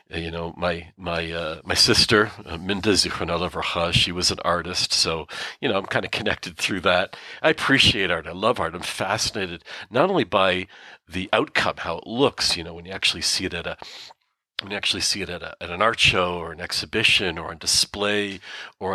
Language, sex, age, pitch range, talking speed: English, male, 40-59, 90-115 Hz, 210 wpm